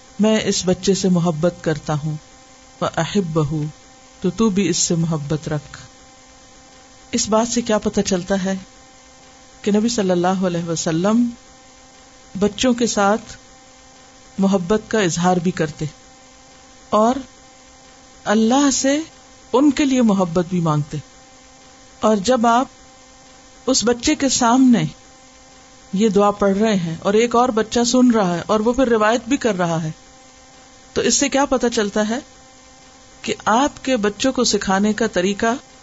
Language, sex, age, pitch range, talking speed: Urdu, female, 50-69, 200-260 Hz, 150 wpm